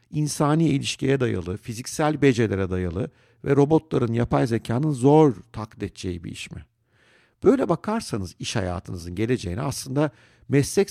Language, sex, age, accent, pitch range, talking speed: Turkish, male, 60-79, native, 105-140 Hz, 125 wpm